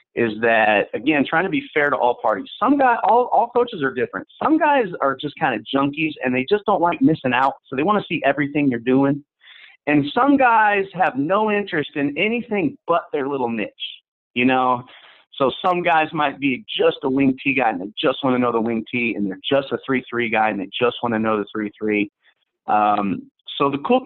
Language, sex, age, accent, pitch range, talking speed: English, male, 30-49, American, 120-185 Hz, 230 wpm